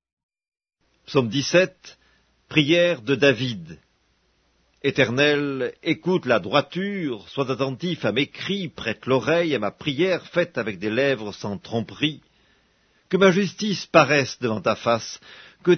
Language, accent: English, French